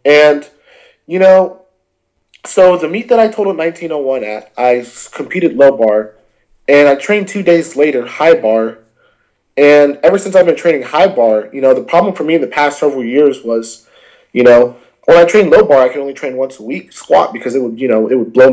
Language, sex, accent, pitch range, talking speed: English, male, American, 125-160 Hz, 215 wpm